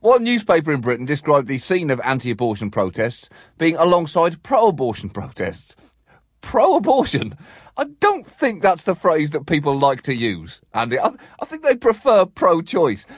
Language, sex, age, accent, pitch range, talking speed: English, male, 30-49, British, 115-185 Hz, 150 wpm